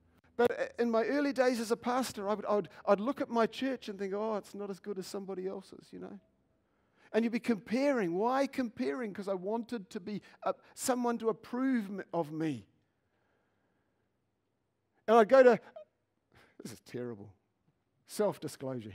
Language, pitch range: English, 165-230 Hz